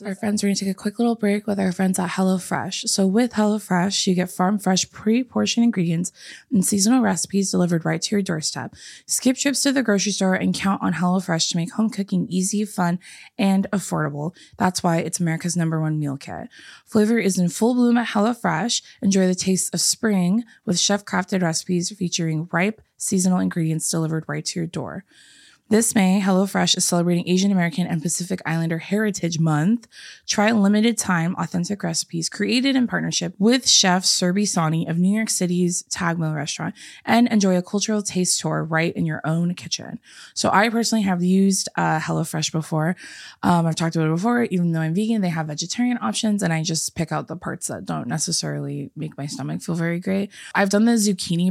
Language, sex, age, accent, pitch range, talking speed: English, female, 20-39, American, 170-205 Hz, 195 wpm